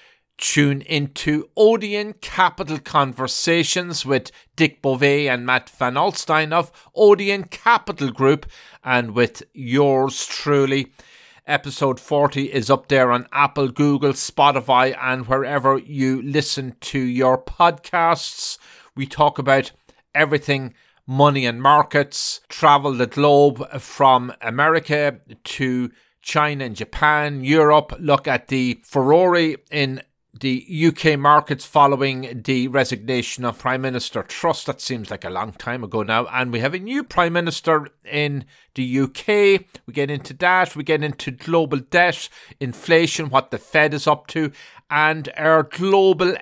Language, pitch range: English, 130-155 Hz